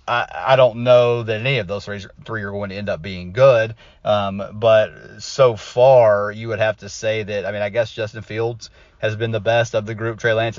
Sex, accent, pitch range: male, American, 100-120 Hz